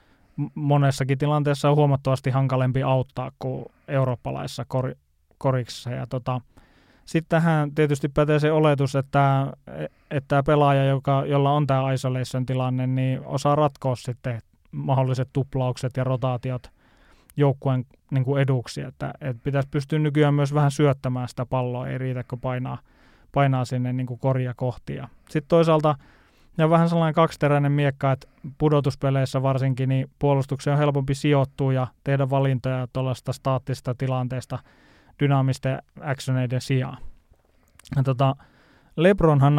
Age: 20-39